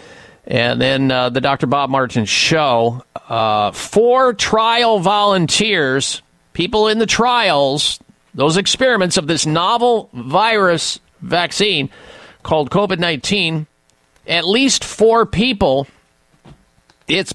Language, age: English, 50-69